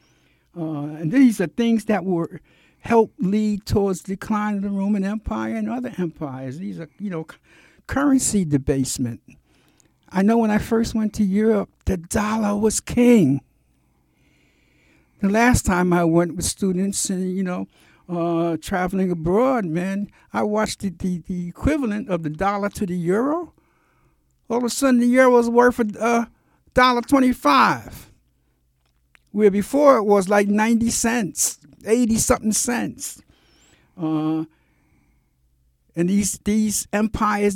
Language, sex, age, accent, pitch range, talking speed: English, male, 60-79, American, 175-225 Hz, 145 wpm